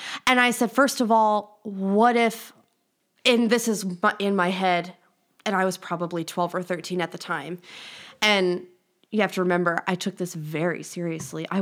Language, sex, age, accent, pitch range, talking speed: English, female, 20-39, American, 190-235 Hz, 180 wpm